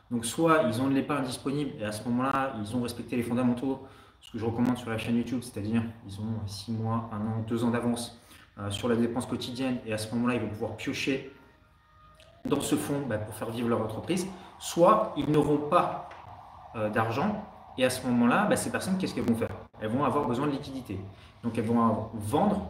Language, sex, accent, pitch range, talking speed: French, male, French, 110-135 Hz, 210 wpm